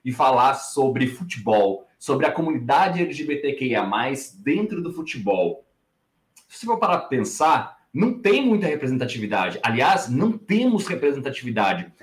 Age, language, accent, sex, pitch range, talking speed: 20-39, Portuguese, Brazilian, male, 125-175 Hz, 125 wpm